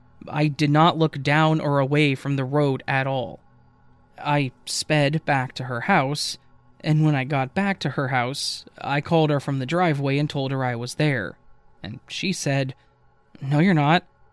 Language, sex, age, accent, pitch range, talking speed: English, male, 20-39, American, 125-160 Hz, 185 wpm